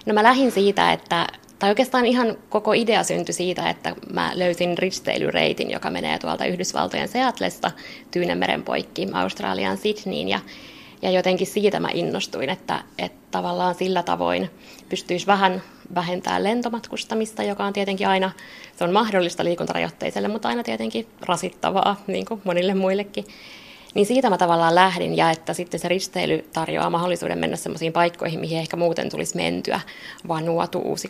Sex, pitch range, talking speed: female, 175-215 Hz, 150 wpm